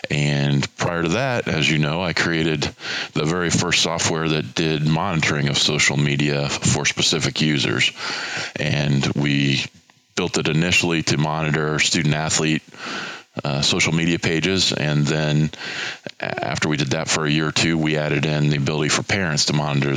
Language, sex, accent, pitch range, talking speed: English, male, American, 70-80 Hz, 165 wpm